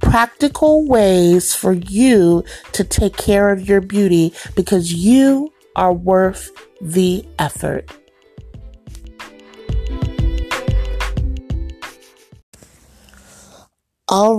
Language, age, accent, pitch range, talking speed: English, 30-49, American, 185-240 Hz, 70 wpm